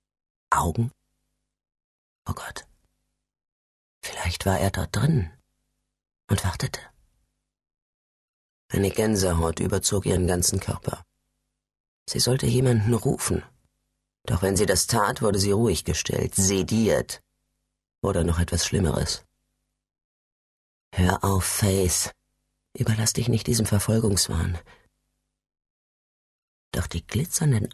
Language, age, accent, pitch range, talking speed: German, 40-59, German, 85-110 Hz, 95 wpm